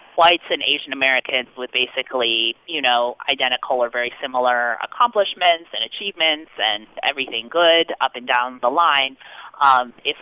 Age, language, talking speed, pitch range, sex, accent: 30-49, English, 140 wpm, 130-195 Hz, female, American